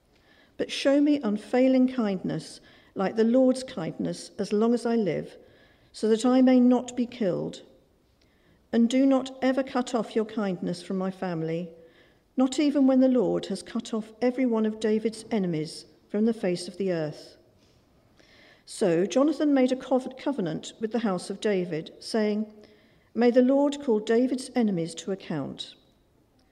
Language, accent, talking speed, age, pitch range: English, British, 160 wpm, 50-69, 180-255 Hz